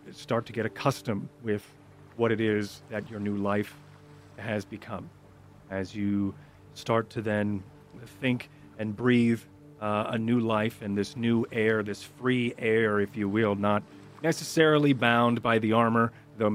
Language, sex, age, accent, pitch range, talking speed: English, male, 40-59, American, 100-120 Hz, 155 wpm